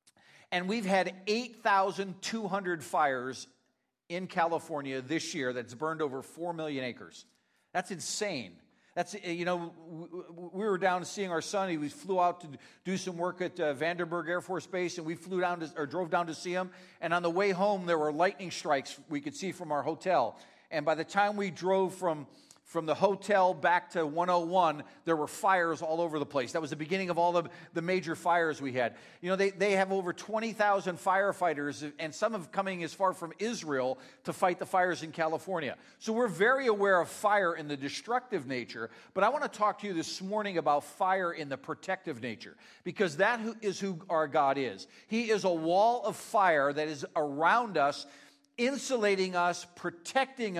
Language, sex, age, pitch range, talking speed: English, male, 50-69, 160-195 Hz, 195 wpm